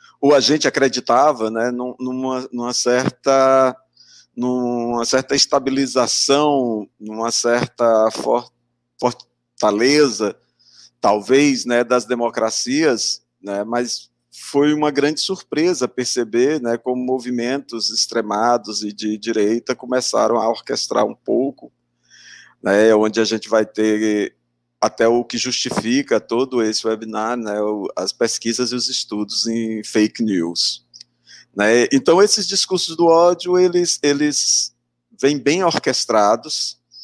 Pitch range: 110-140 Hz